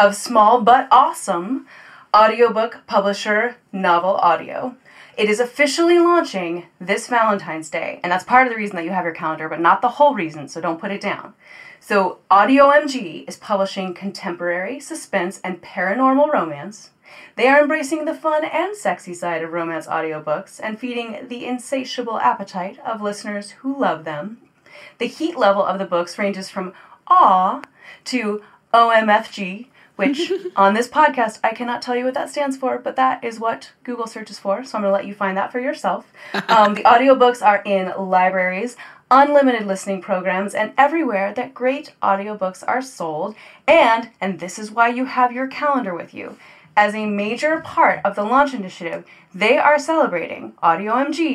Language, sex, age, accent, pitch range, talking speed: English, female, 30-49, American, 195-270 Hz, 170 wpm